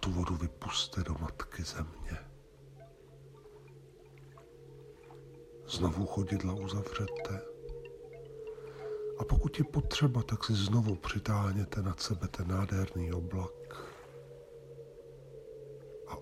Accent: native